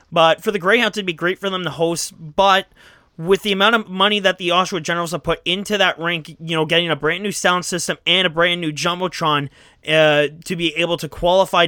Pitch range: 170-210 Hz